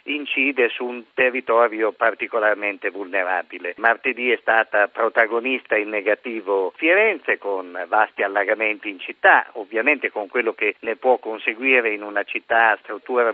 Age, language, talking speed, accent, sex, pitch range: 50-69, Italian, 135 wpm, native, male, 110-130 Hz